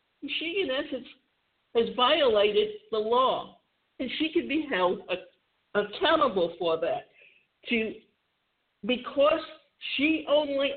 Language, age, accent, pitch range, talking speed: English, 60-79, American, 230-330 Hz, 105 wpm